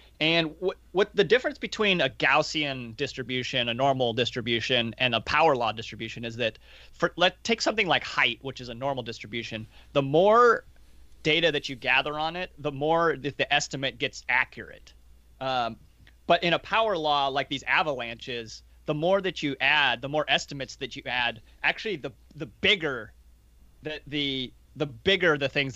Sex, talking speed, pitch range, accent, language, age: male, 175 wpm, 115-155 Hz, American, English, 30-49